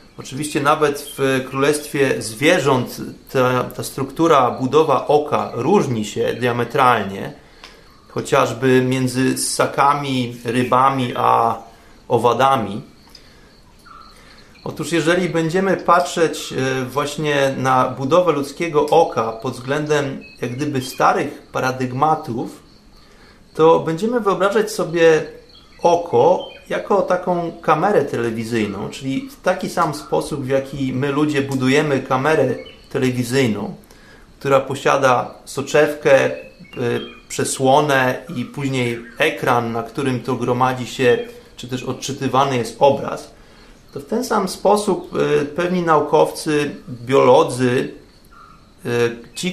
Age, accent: 30-49, native